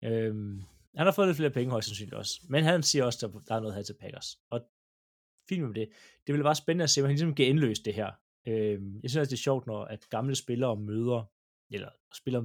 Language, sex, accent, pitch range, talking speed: Danish, male, native, 105-150 Hz, 250 wpm